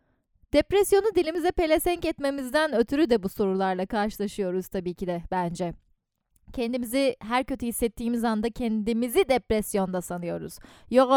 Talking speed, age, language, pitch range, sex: 120 wpm, 10-29, Turkish, 215-285 Hz, female